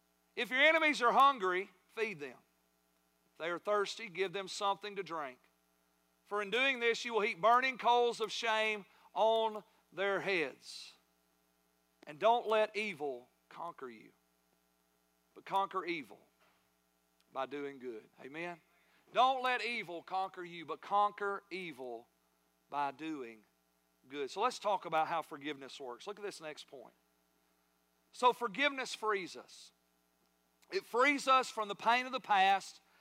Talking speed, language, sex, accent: 145 wpm, English, male, American